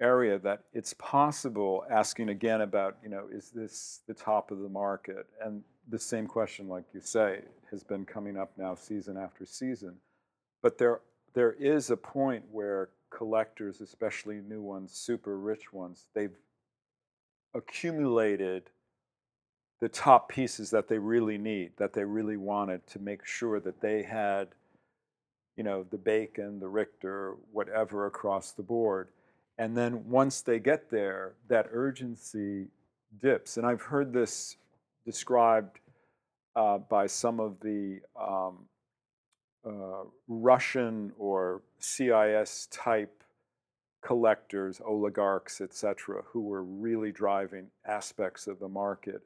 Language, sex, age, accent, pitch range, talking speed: English, male, 50-69, American, 100-120 Hz, 135 wpm